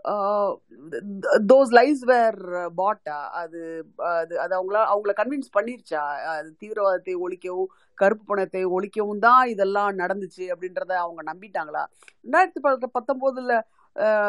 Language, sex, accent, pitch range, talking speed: Tamil, female, native, 180-250 Hz, 90 wpm